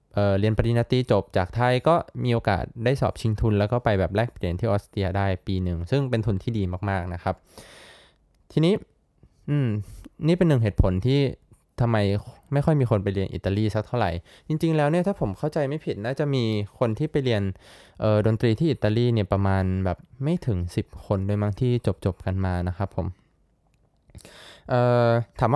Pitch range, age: 100-125 Hz, 20-39